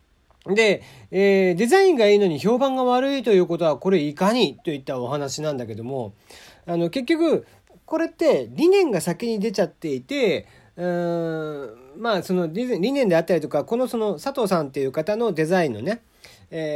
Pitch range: 135-215 Hz